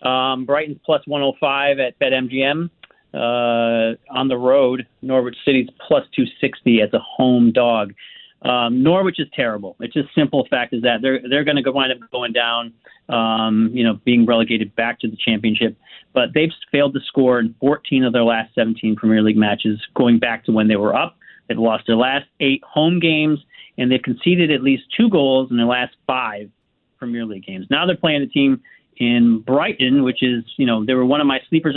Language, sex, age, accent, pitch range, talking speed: English, male, 40-59, American, 120-165 Hz, 200 wpm